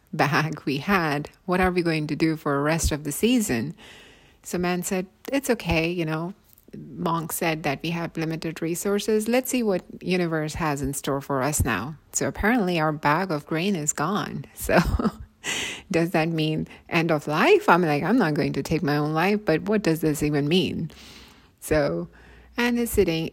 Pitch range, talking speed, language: 150-190 Hz, 190 wpm, English